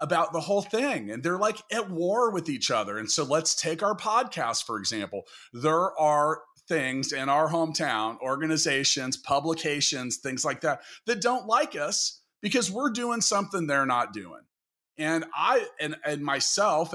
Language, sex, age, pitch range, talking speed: English, male, 40-59, 130-190 Hz, 165 wpm